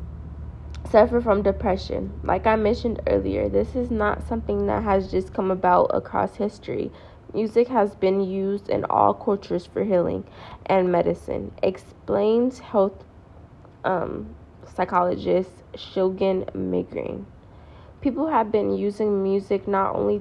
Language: English